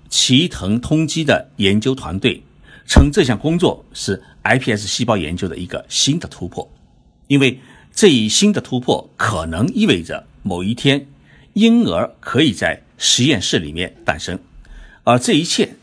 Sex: male